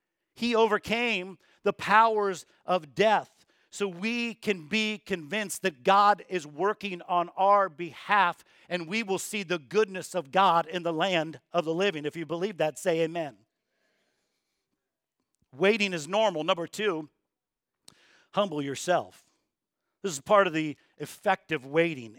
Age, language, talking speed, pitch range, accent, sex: 50-69, English, 140 wpm, 165-210 Hz, American, male